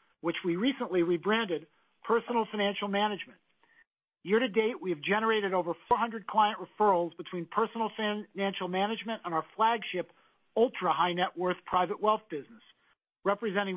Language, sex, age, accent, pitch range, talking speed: English, male, 50-69, American, 180-215 Hz, 120 wpm